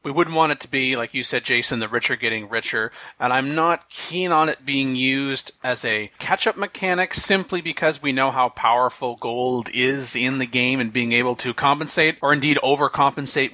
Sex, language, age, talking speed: male, English, 30-49, 200 wpm